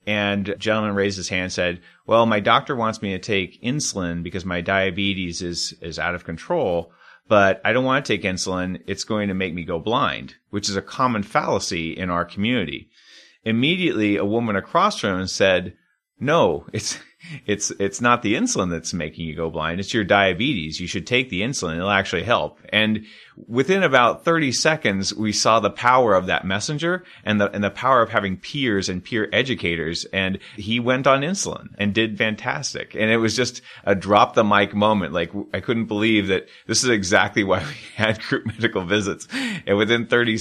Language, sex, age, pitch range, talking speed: English, male, 30-49, 95-120 Hz, 195 wpm